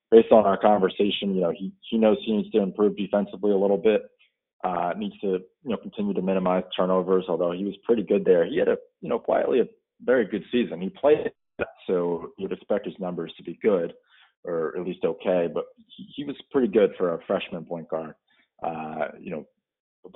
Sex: male